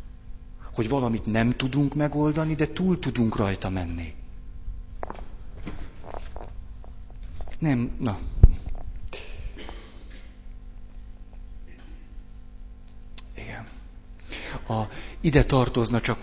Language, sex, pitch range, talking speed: Hungarian, male, 95-120 Hz, 65 wpm